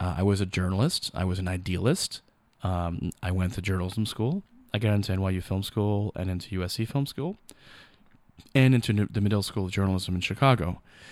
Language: English